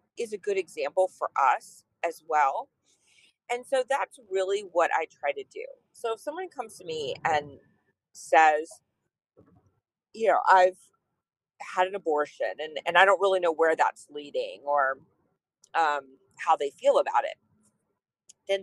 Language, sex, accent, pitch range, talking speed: English, female, American, 155-235 Hz, 155 wpm